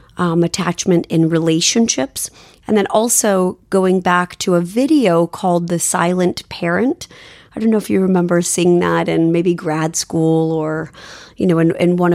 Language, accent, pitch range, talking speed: English, American, 170-215 Hz, 170 wpm